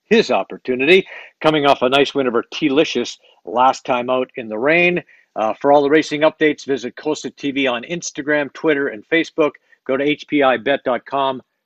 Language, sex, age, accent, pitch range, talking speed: English, male, 60-79, American, 145-210 Hz, 165 wpm